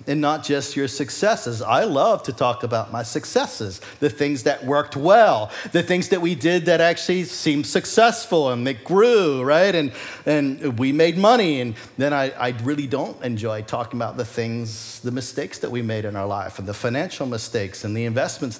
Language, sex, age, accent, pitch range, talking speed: English, male, 50-69, American, 115-155 Hz, 195 wpm